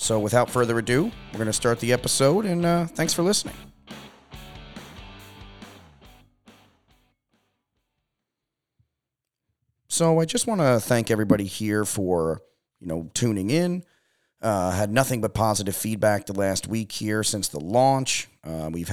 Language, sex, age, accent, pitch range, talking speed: English, male, 30-49, American, 95-120 Hz, 135 wpm